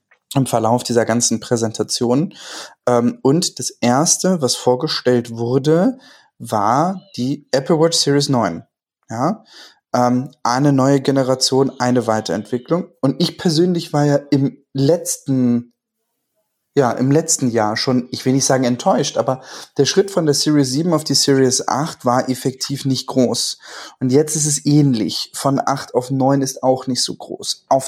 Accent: German